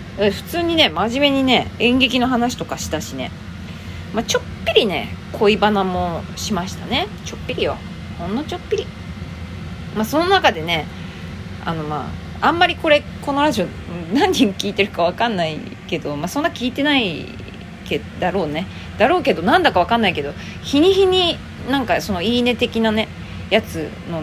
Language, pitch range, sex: Japanese, 180-290 Hz, female